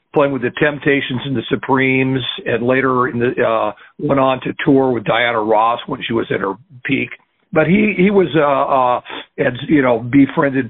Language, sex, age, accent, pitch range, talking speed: English, male, 50-69, American, 125-145 Hz, 195 wpm